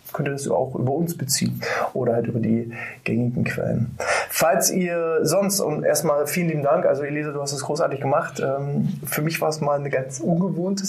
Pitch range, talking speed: 135-175 Hz, 205 wpm